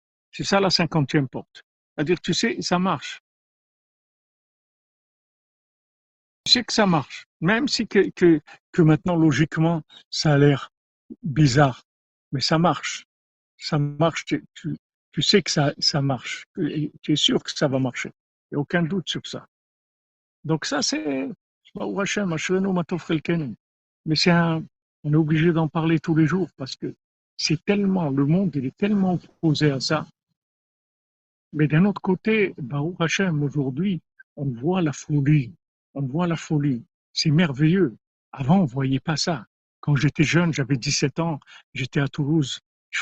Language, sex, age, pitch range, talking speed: French, male, 60-79, 145-175 Hz, 155 wpm